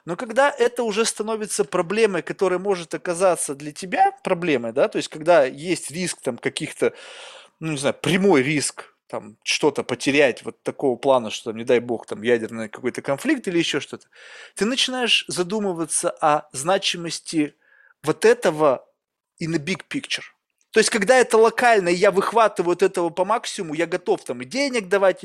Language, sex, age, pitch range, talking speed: Russian, male, 30-49, 155-225 Hz, 165 wpm